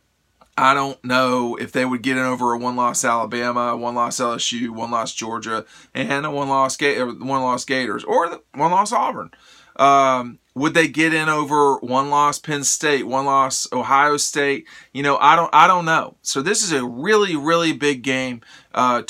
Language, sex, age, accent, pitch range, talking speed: English, male, 40-59, American, 120-145 Hz, 165 wpm